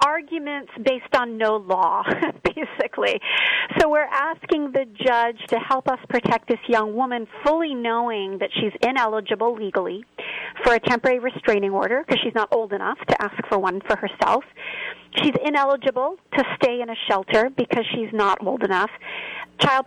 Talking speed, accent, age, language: 160 wpm, American, 40-59, English